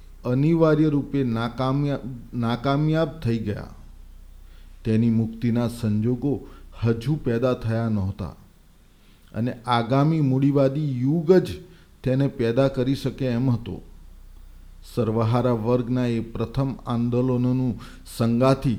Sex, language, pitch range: male, Gujarati, 110-135 Hz